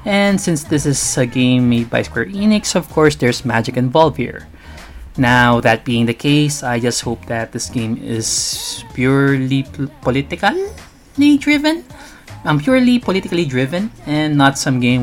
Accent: native